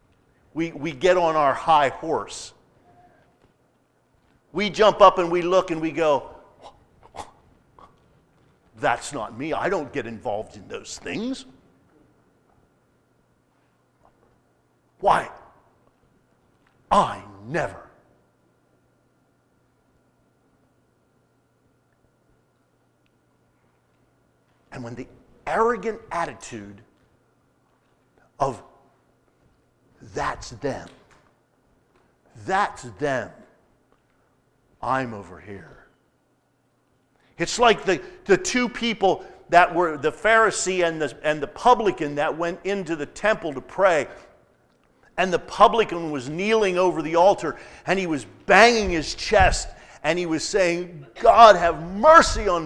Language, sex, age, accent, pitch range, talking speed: English, male, 50-69, American, 130-190 Hz, 95 wpm